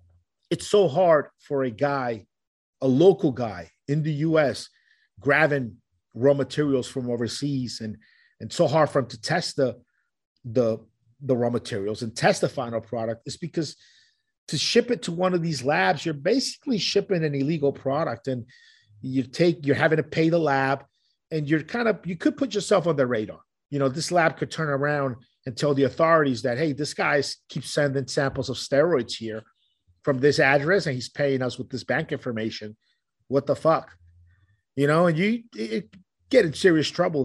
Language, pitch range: English, 120-165 Hz